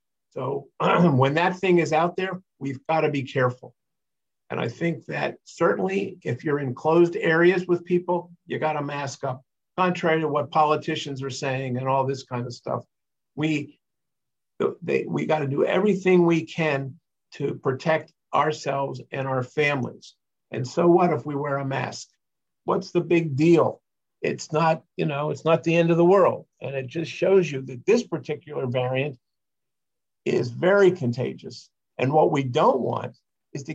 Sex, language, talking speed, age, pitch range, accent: male, English, 175 wpm, 50-69, 135-170 Hz, American